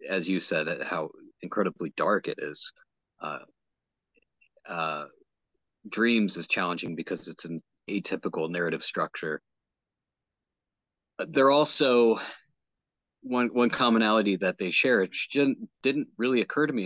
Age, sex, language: 30-49, male, English